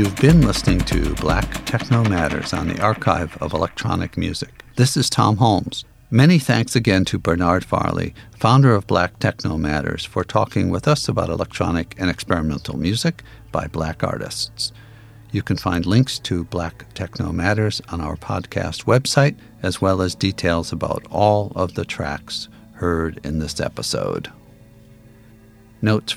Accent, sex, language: American, male, English